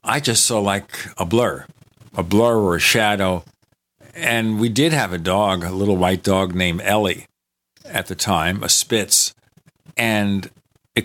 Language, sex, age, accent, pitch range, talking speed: English, male, 50-69, American, 90-115 Hz, 165 wpm